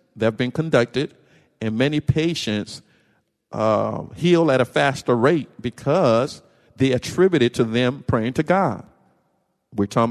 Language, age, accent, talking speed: English, 50-69, American, 135 wpm